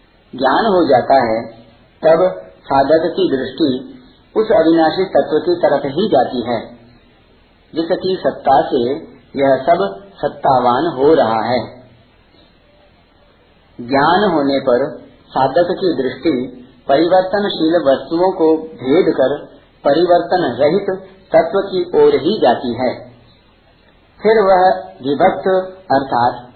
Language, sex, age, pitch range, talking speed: Hindi, male, 50-69, 125-175 Hz, 110 wpm